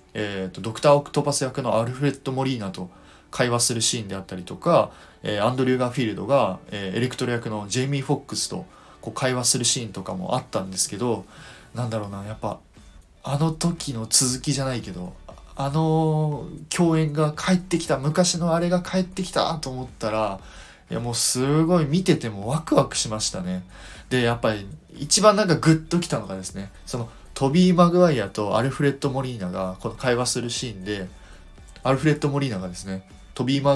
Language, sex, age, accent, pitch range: Japanese, male, 20-39, native, 105-150 Hz